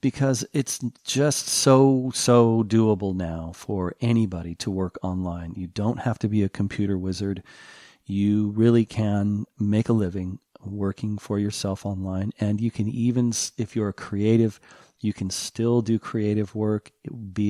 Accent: American